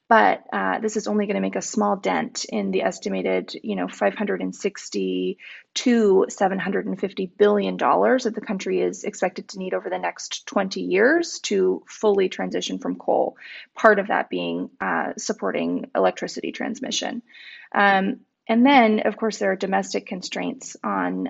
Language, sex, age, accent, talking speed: English, female, 20-39, American, 155 wpm